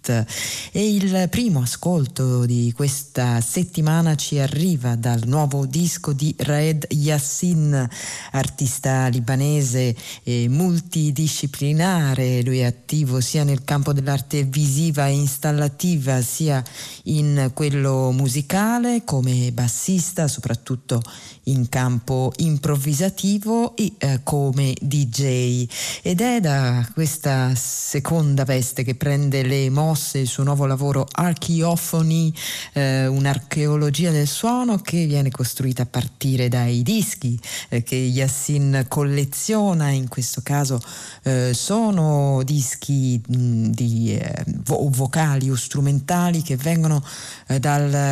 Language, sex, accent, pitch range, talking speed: Italian, female, native, 130-155 Hz, 110 wpm